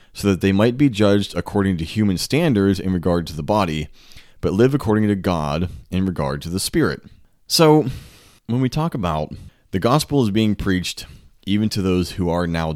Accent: American